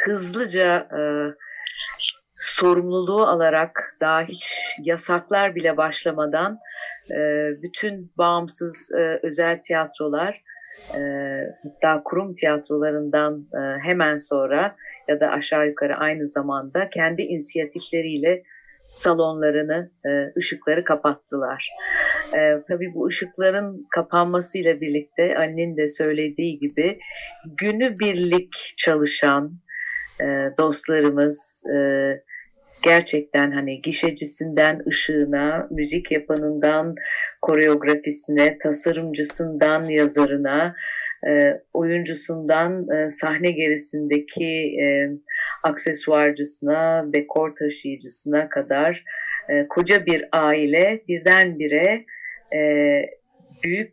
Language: Turkish